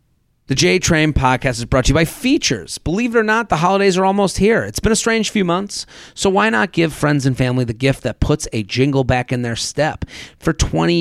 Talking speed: 240 wpm